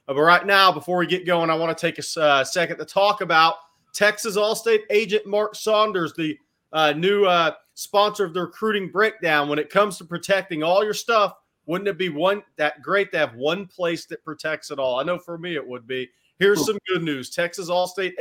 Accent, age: American, 30-49